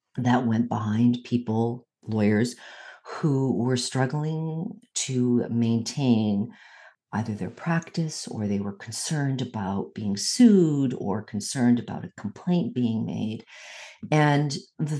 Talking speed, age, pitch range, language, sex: 115 wpm, 50-69, 105-135 Hz, English, female